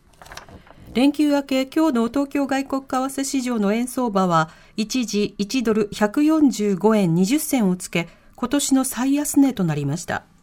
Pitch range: 185-270 Hz